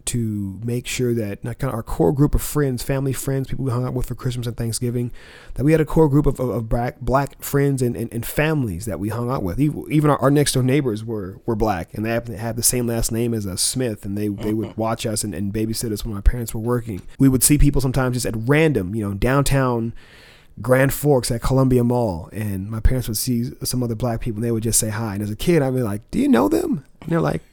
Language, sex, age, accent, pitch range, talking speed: English, male, 30-49, American, 115-150 Hz, 270 wpm